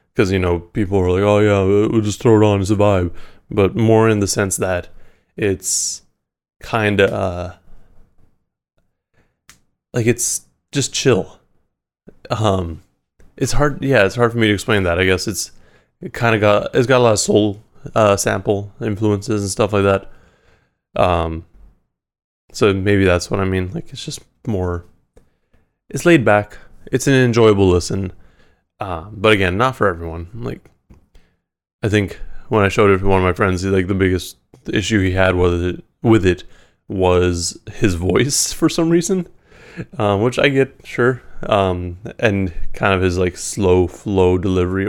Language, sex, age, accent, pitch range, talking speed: English, male, 20-39, American, 90-110 Hz, 170 wpm